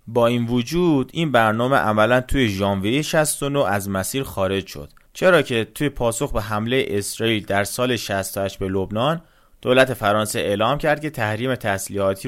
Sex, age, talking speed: male, 30-49, 155 wpm